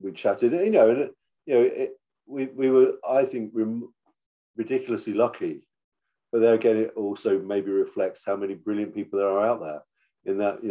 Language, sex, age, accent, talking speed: English, male, 50-69, British, 195 wpm